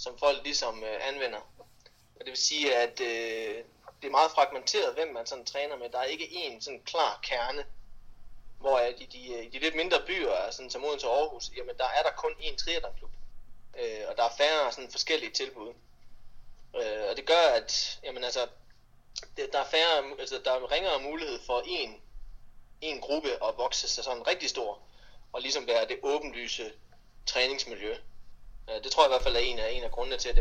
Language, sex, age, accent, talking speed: Danish, male, 20-39, native, 200 wpm